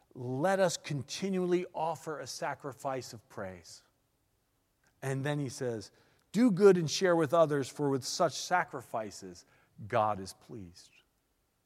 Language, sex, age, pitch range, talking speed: English, male, 40-59, 115-150 Hz, 130 wpm